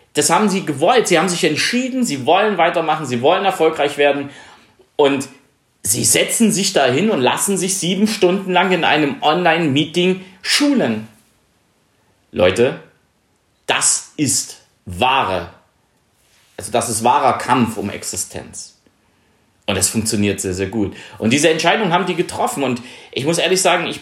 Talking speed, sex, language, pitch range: 145 wpm, male, German, 130-180 Hz